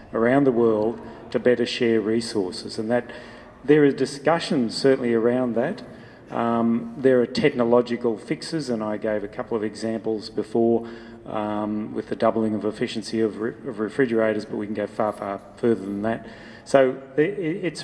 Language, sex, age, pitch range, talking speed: English, male, 30-49, 115-130 Hz, 160 wpm